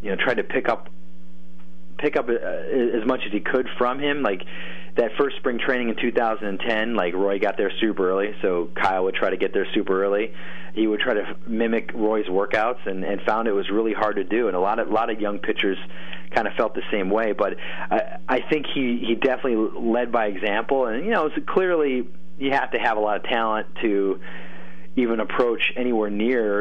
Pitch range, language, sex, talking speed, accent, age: 90-115 Hz, English, male, 220 wpm, American, 30-49